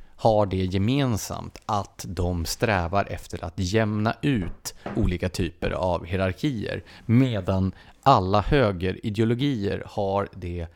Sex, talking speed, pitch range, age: male, 105 wpm, 95-120 Hz, 30-49